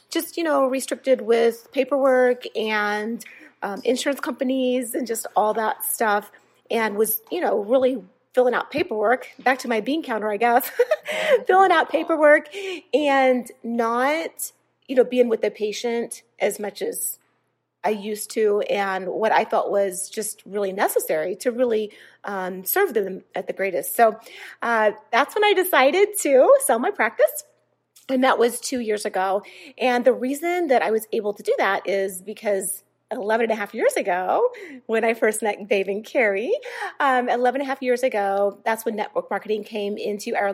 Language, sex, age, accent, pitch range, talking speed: English, female, 30-49, American, 215-275 Hz, 175 wpm